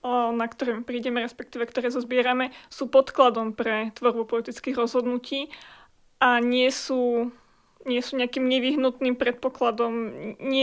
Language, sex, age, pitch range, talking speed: Slovak, female, 20-39, 240-265 Hz, 120 wpm